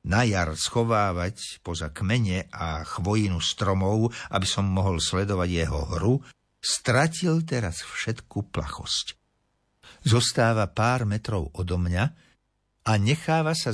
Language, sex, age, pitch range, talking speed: Slovak, male, 60-79, 85-120 Hz, 115 wpm